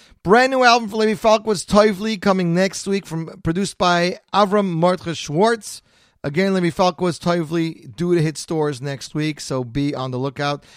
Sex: male